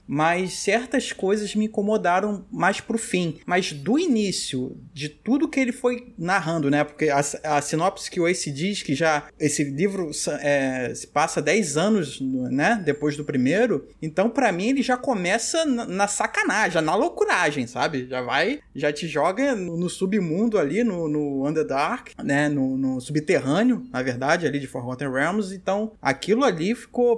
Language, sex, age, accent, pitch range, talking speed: Portuguese, male, 20-39, Brazilian, 150-225 Hz, 170 wpm